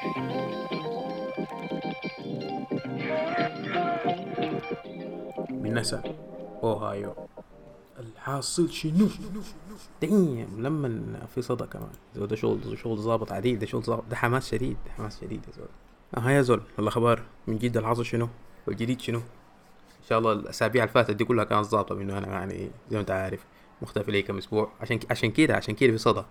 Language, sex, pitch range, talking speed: Arabic, male, 100-125 Hz, 140 wpm